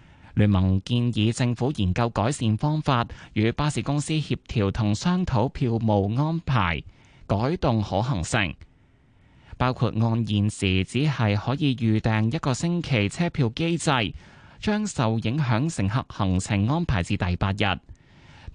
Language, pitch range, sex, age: Chinese, 100-145 Hz, male, 20-39